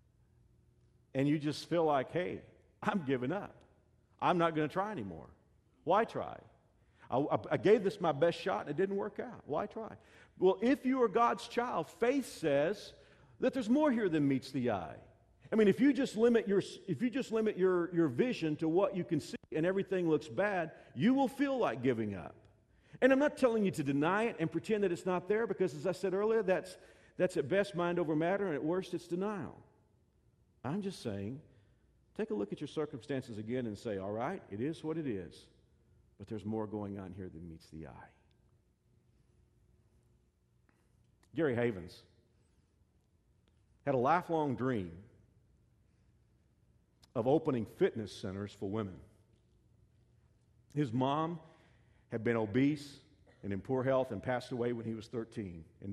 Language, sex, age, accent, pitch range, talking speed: English, male, 50-69, American, 110-185 Hz, 180 wpm